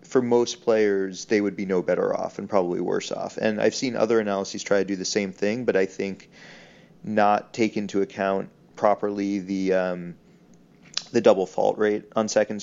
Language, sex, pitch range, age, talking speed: English, male, 95-110 Hz, 30-49, 190 wpm